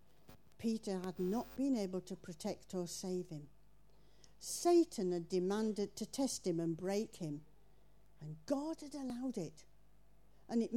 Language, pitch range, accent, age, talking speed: English, 170-260 Hz, British, 50-69, 145 wpm